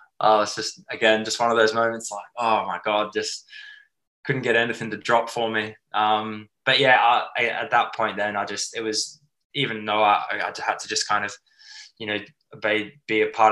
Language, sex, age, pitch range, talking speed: English, male, 10-29, 100-115 Hz, 210 wpm